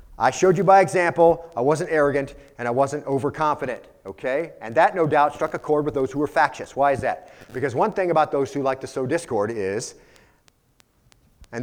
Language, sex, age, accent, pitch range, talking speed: English, male, 40-59, American, 115-150 Hz, 205 wpm